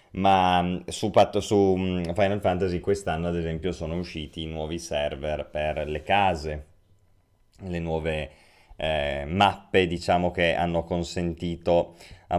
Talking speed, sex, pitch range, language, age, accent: 115 wpm, male, 80-95 Hz, Italian, 20-39, native